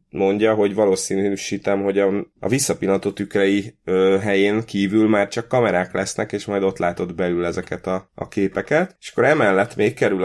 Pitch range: 95-110 Hz